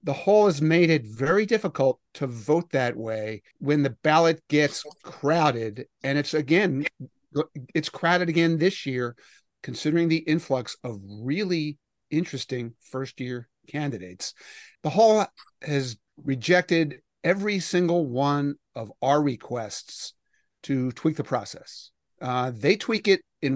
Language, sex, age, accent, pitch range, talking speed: English, male, 50-69, American, 130-170 Hz, 130 wpm